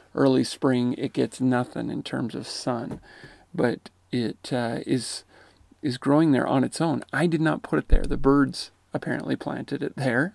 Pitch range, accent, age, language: 120-140 Hz, American, 40-59, English